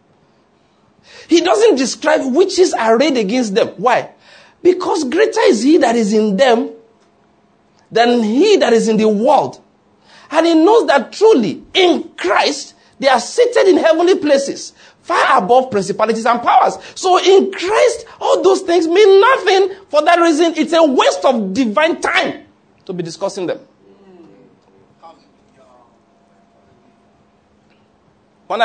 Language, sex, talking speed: English, male, 135 wpm